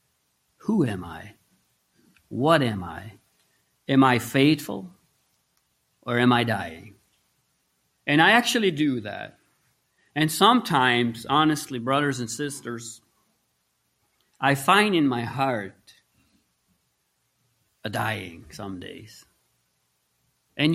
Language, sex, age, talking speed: English, male, 40-59, 100 wpm